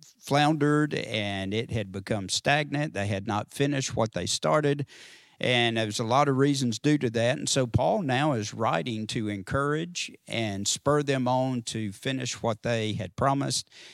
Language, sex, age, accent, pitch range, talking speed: English, male, 50-69, American, 110-135 Hz, 170 wpm